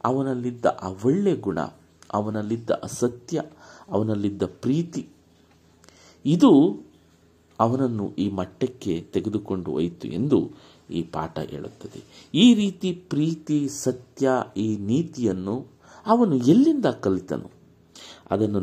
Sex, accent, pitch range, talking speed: male, native, 90-135 Hz, 90 wpm